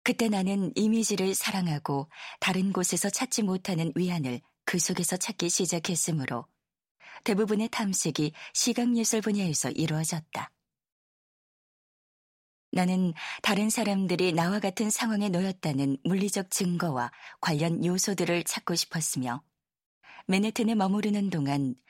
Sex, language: female, Korean